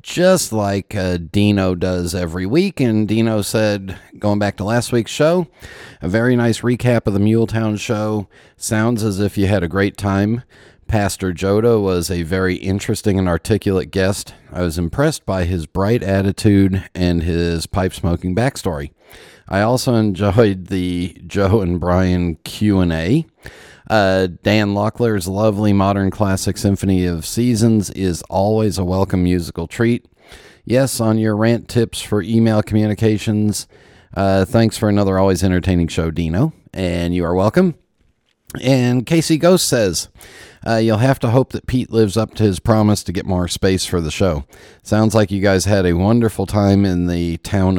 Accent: American